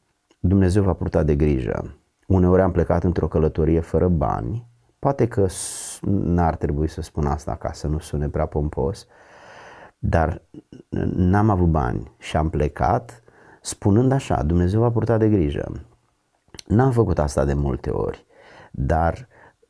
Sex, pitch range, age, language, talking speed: male, 75-95 Hz, 30-49, Romanian, 140 wpm